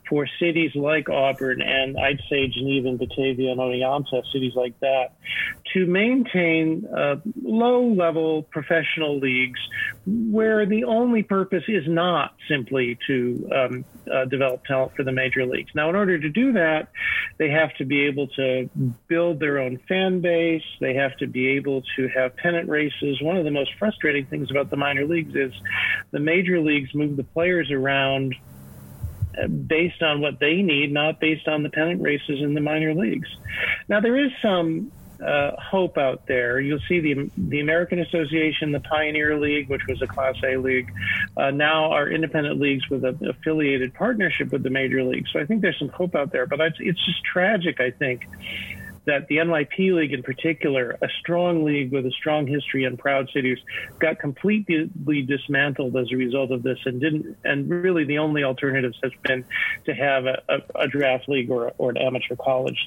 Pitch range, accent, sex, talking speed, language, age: 130-165 Hz, American, male, 180 wpm, English, 40-59